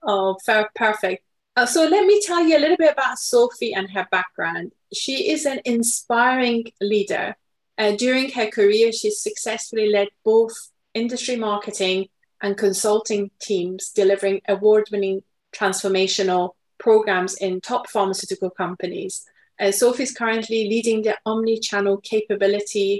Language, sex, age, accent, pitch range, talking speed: English, female, 30-49, British, 190-230 Hz, 130 wpm